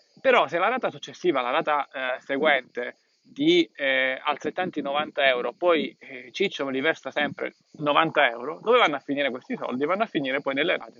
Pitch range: 135-210 Hz